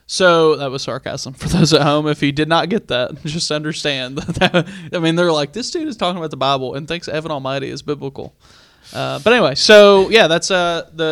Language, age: English, 20-39